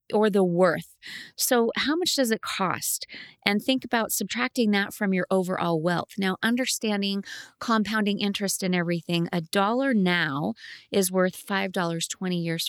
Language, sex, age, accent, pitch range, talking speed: English, female, 30-49, American, 180-230 Hz, 155 wpm